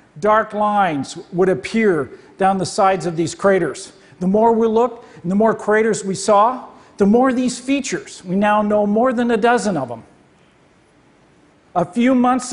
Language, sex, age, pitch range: Chinese, male, 50-69, 190-235 Hz